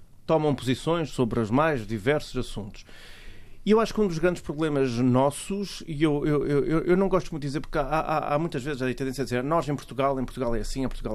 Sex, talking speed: male, 255 wpm